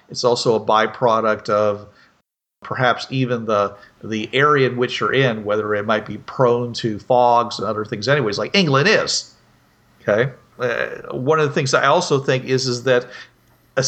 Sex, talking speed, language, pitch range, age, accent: male, 175 wpm, English, 125-160 Hz, 50-69, American